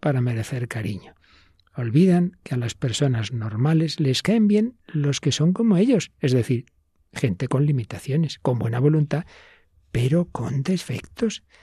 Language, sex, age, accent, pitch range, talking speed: Spanish, male, 60-79, Spanish, 125-160 Hz, 145 wpm